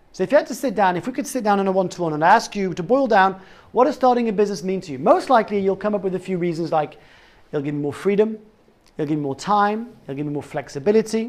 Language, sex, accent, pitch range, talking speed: English, male, British, 155-220 Hz, 285 wpm